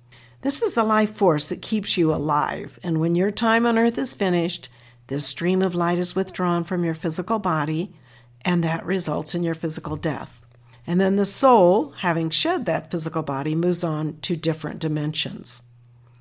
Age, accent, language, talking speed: 60-79, American, English, 180 wpm